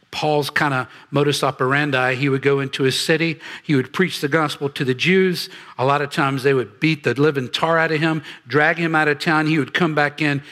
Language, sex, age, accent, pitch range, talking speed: English, male, 50-69, American, 140-170 Hz, 240 wpm